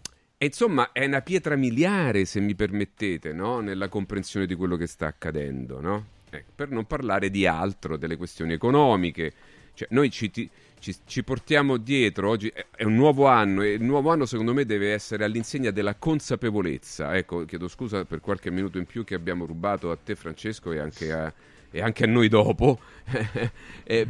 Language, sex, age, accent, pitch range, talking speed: Italian, male, 40-59, native, 90-135 Hz, 185 wpm